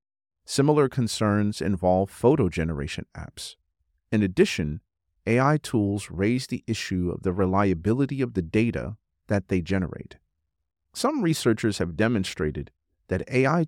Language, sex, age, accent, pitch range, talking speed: English, male, 40-59, American, 85-120 Hz, 125 wpm